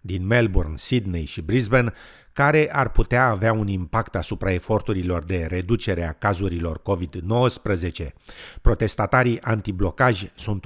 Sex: male